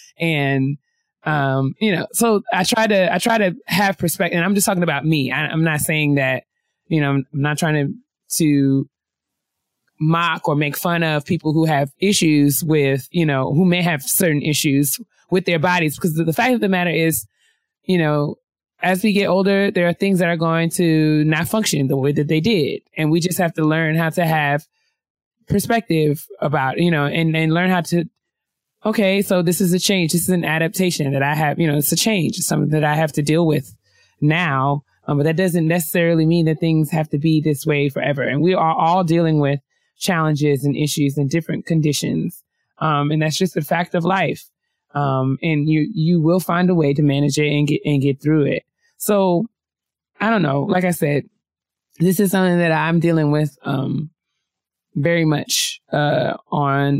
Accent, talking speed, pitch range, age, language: American, 205 wpm, 145-180 Hz, 20-39, English